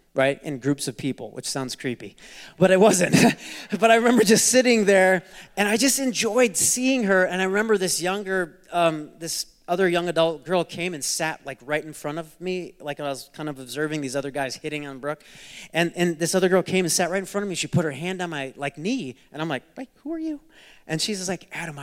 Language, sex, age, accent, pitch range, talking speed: English, male, 30-49, American, 160-225 Hz, 240 wpm